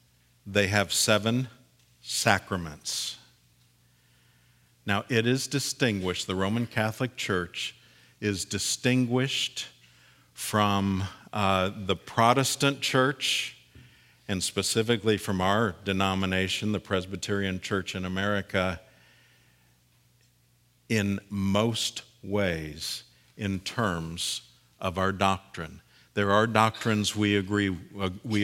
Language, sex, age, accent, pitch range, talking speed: English, male, 50-69, American, 90-115 Hz, 90 wpm